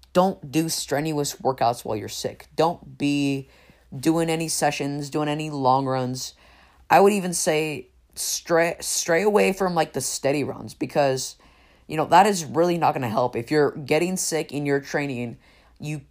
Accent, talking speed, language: American, 170 wpm, English